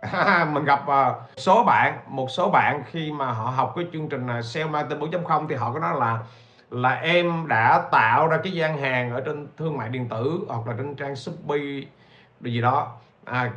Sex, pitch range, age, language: male, 130-200 Hz, 60-79, Vietnamese